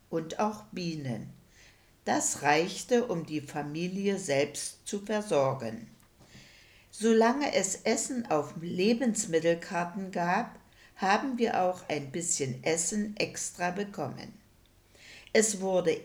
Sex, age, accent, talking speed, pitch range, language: female, 60-79, German, 100 wpm, 150-210 Hz, English